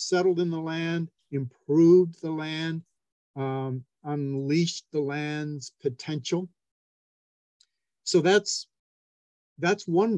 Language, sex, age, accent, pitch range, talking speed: English, male, 50-69, American, 125-160 Hz, 95 wpm